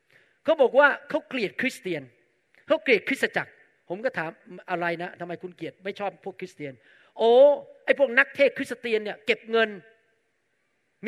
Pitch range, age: 230-310 Hz, 40-59